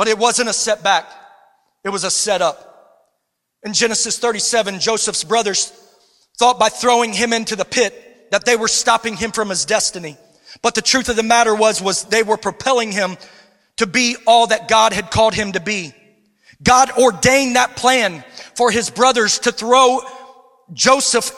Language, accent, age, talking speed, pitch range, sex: English, American, 40-59, 170 wpm, 220-275 Hz, male